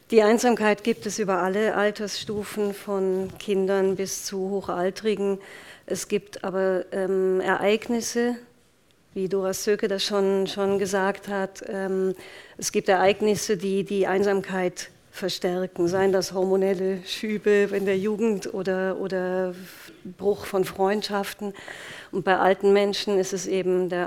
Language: German